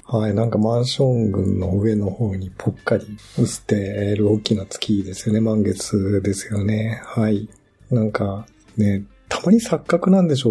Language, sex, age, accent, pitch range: Japanese, male, 50-69, native, 100-125 Hz